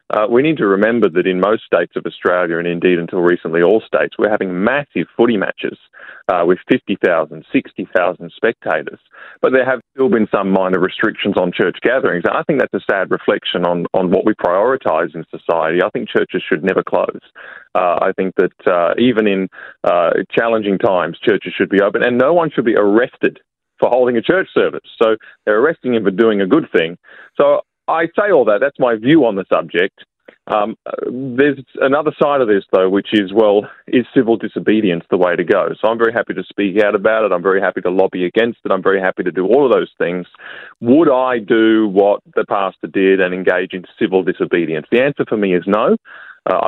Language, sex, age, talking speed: English, male, 30-49, 210 wpm